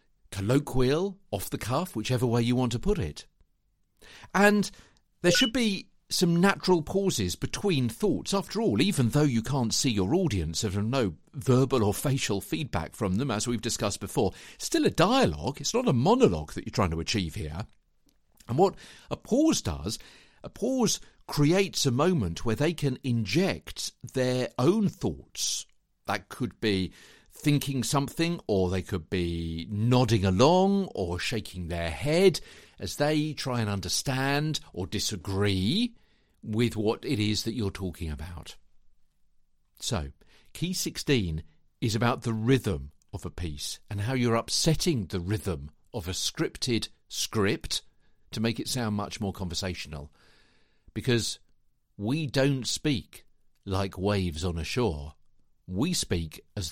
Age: 50-69